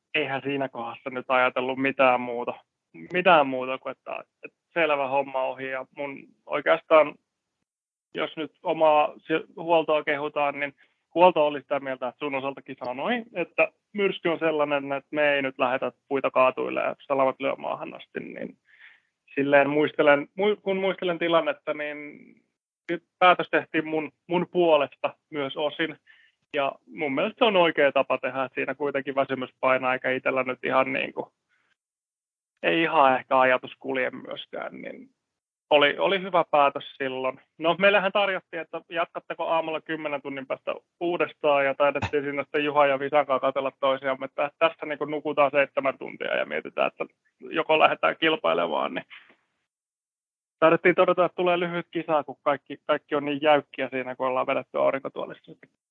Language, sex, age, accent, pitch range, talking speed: Finnish, male, 20-39, native, 135-160 Hz, 150 wpm